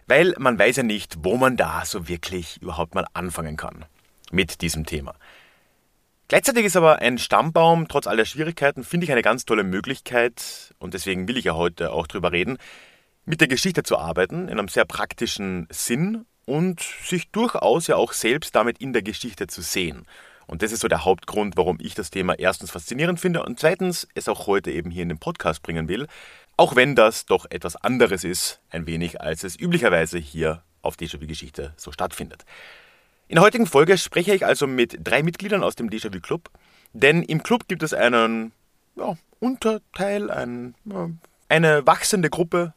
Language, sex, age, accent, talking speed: German, male, 30-49, German, 185 wpm